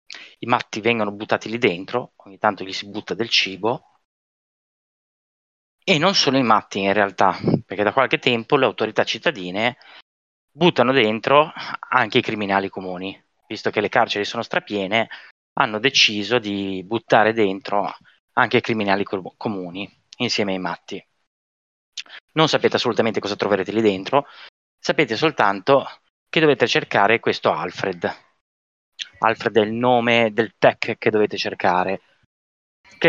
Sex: male